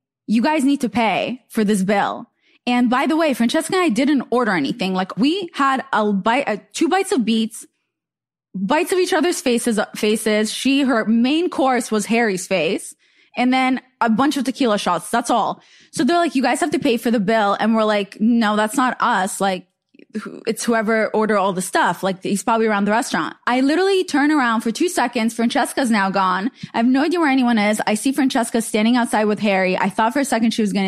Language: English